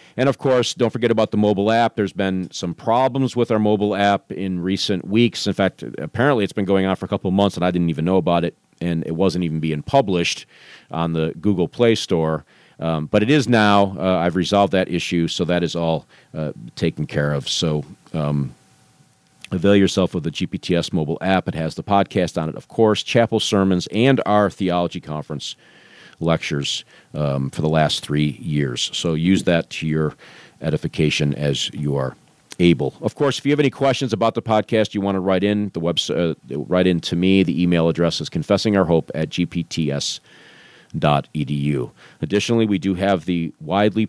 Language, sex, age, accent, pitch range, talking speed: English, male, 40-59, American, 80-105 Hz, 195 wpm